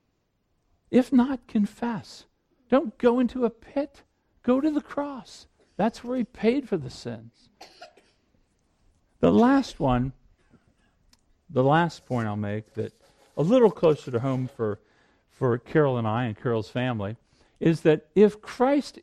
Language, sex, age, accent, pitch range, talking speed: English, male, 50-69, American, 125-195 Hz, 140 wpm